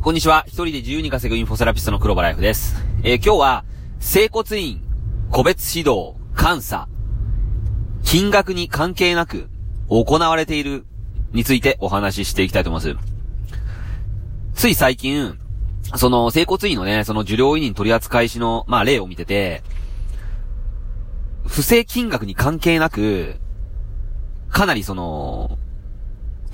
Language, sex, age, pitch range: Japanese, male, 30-49, 95-140 Hz